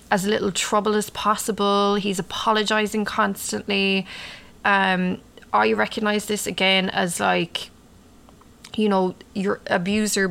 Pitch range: 185-225 Hz